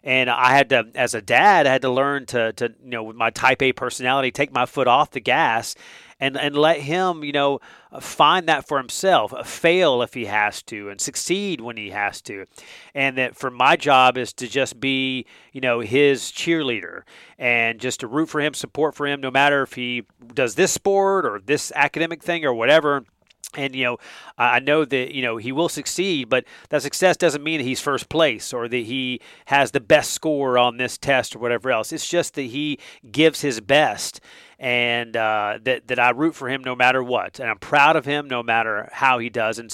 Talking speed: 215 wpm